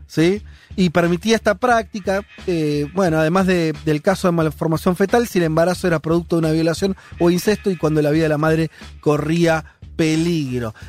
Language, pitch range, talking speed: Spanish, 145-190 Hz, 180 wpm